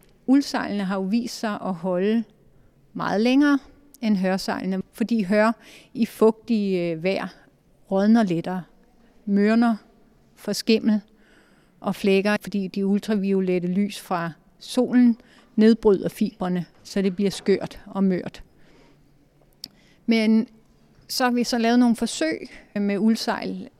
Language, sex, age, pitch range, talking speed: Danish, female, 30-49, 190-230 Hz, 115 wpm